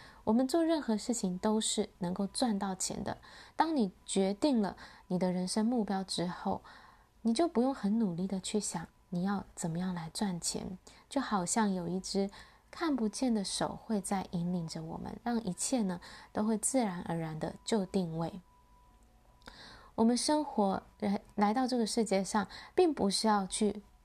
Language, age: Chinese, 20-39